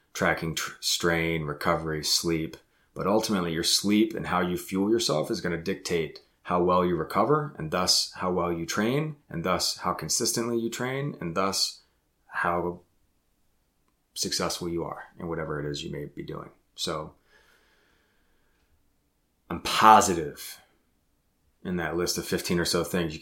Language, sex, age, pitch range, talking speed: English, male, 30-49, 80-100 Hz, 155 wpm